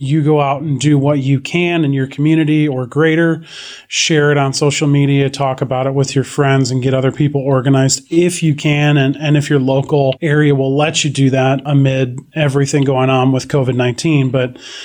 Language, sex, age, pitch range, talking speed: English, male, 30-49, 135-150 Hz, 200 wpm